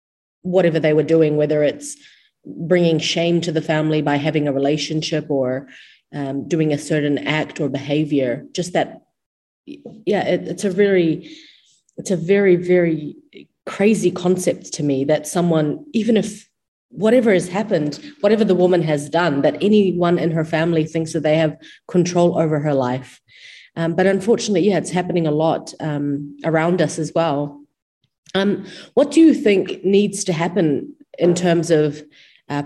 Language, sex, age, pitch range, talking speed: English, female, 30-49, 145-180 Hz, 155 wpm